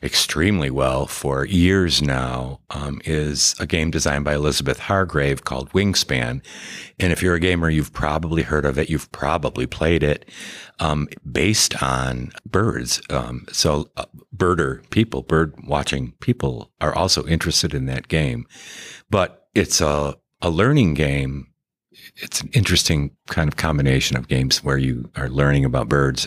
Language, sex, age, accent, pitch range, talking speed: English, male, 50-69, American, 70-90 Hz, 155 wpm